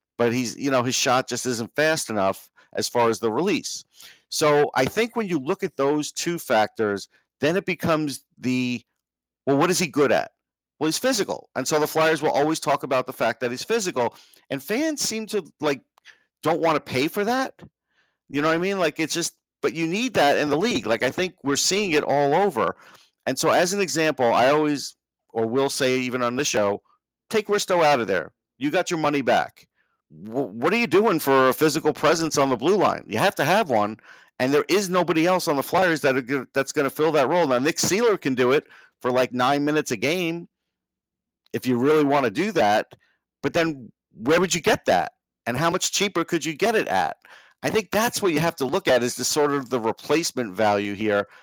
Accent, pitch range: American, 125-170 Hz